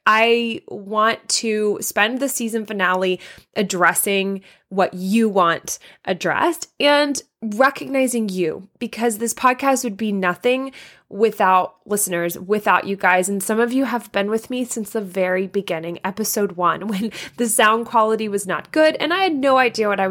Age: 20-39